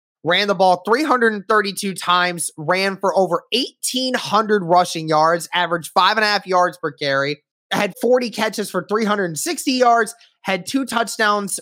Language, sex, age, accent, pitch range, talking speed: English, male, 20-39, American, 180-215 Hz, 180 wpm